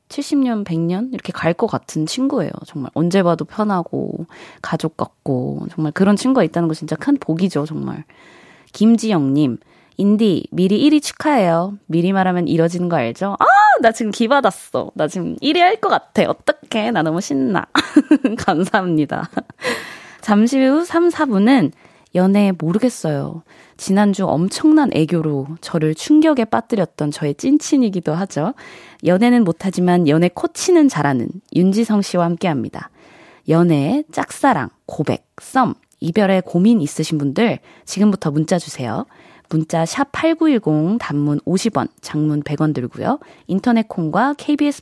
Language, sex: Korean, female